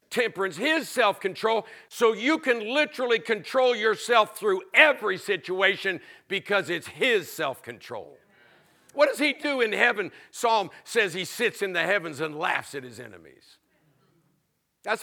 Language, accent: English, American